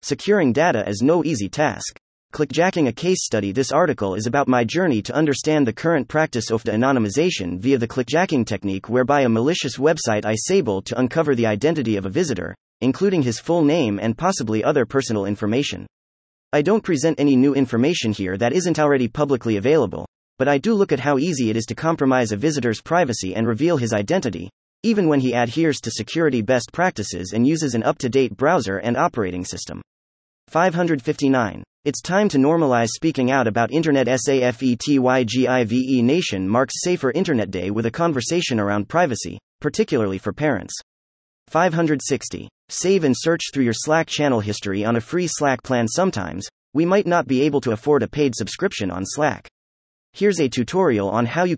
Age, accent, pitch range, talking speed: 30-49, American, 110-155 Hz, 185 wpm